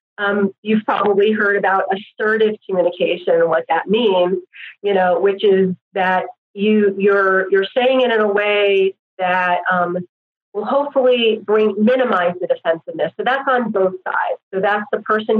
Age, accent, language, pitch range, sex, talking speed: 30-49, American, English, 185-220 Hz, female, 160 wpm